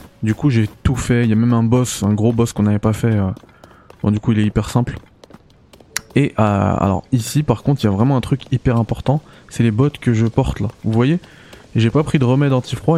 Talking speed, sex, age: 255 wpm, male, 20-39